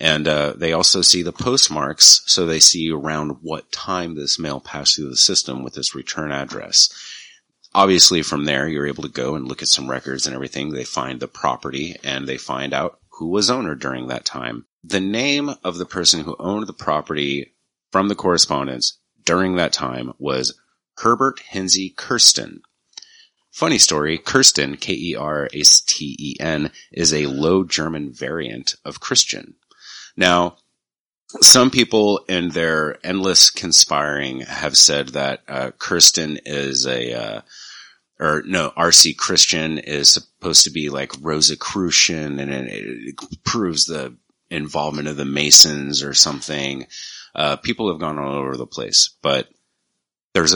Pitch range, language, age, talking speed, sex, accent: 70-85 Hz, English, 30-49, 150 wpm, male, American